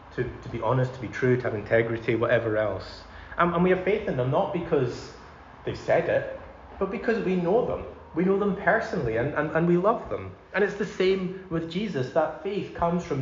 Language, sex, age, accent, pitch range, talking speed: English, male, 30-49, British, 120-170 Hz, 220 wpm